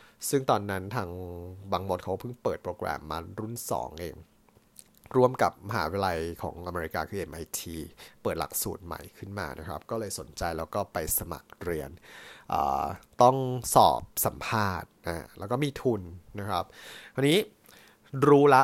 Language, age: English, 20-39